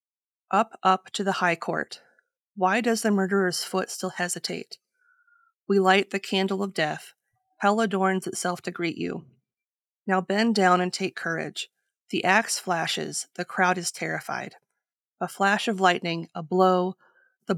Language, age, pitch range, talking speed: English, 30-49, 180-215 Hz, 155 wpm